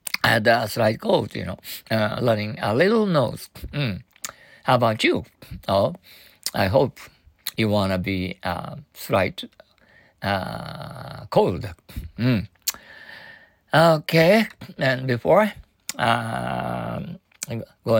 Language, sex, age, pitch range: Japanese, male, 60-79, 105-140 Hz